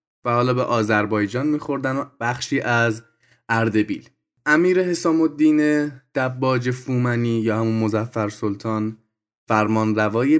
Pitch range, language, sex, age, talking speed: 110-130 Hz, Persian, male, 20-39, 105 wpm